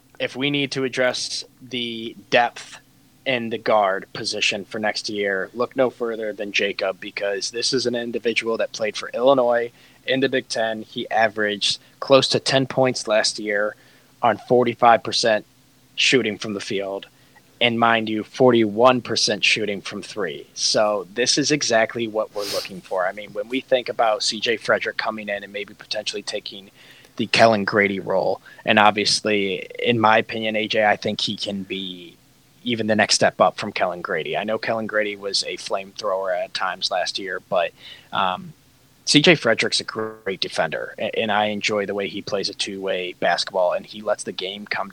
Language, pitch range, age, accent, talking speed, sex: English, 105-125 Hz, 20-39, American, 175 wpm, male